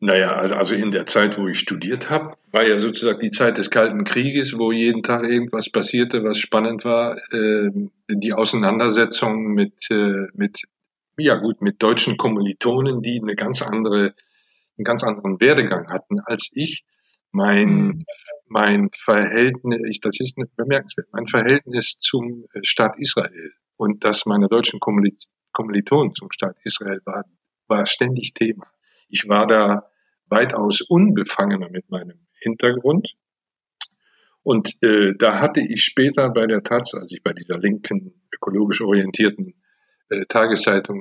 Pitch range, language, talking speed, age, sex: 105-130 Hz, German, 145 wpm, 50-69, male